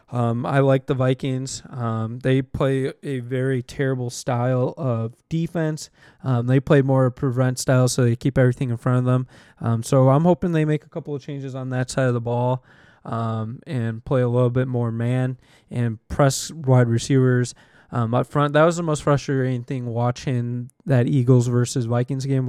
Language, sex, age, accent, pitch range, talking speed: English, male, 20-39, American, 120-135 Hz, 190 wpm